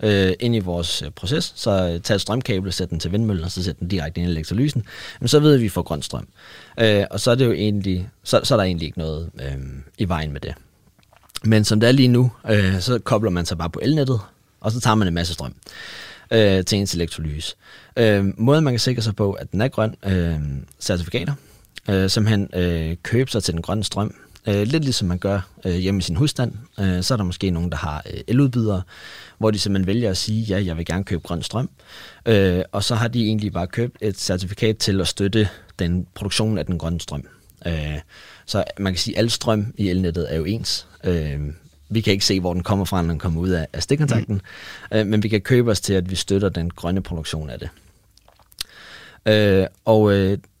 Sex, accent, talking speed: male, native, 220 wpm